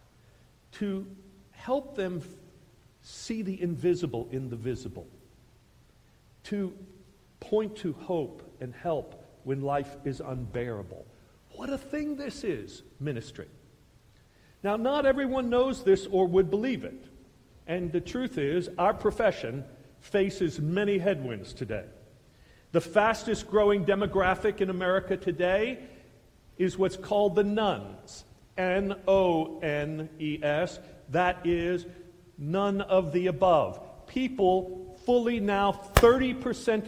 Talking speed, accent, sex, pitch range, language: 110 wpm, American, male, 150-205 Hz, English